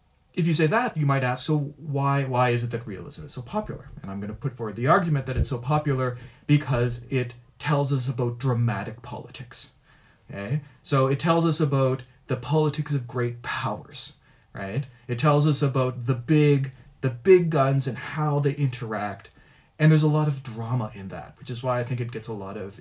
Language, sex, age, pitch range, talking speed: Danish, male, 40-59, 115-145 Hz, 210 wpm